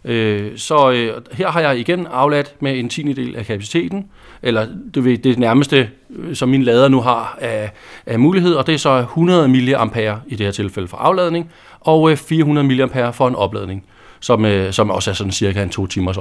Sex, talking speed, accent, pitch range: male, 195 wpm, native, 110-155 Hz